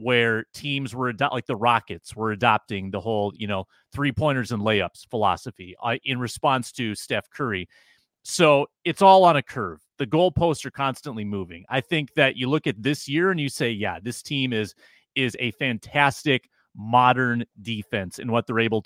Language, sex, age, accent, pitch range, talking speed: English, male, 30-49, American, 115-145 Hz, 180 wpm